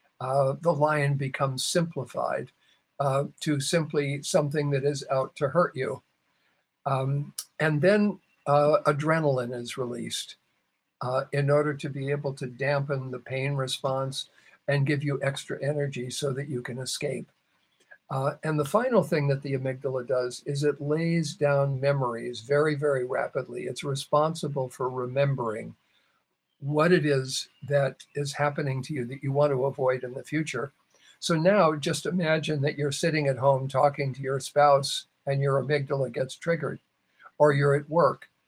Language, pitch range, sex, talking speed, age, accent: English, 135-150 Hz, male, 160 wpm, 50-69, American